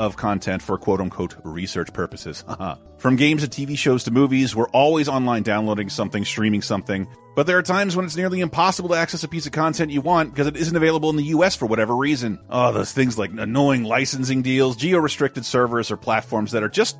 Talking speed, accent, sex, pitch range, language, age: 210 wpm, American, male, 105-150 Hz, English, 30-49